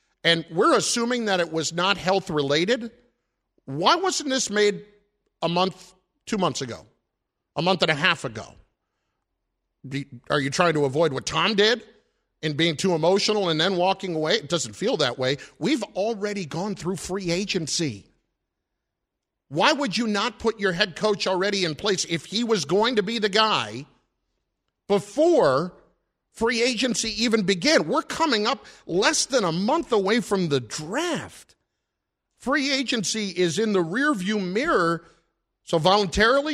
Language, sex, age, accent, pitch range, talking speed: English, male, 50-69, American, 165-225 Hz, 155 wpm